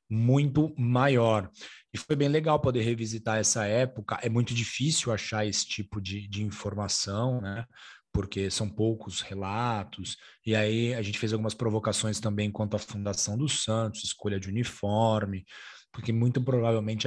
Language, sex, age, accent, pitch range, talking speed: Portuguese, male, 20-39, Brazilian, 105-120 Hz, 150 wpm